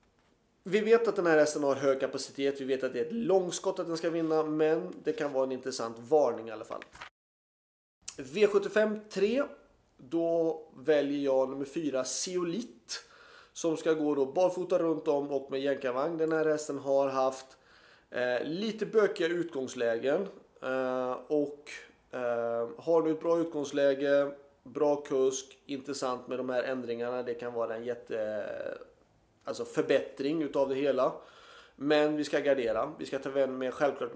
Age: 30-49